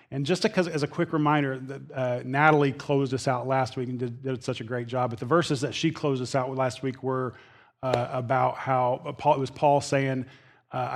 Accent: American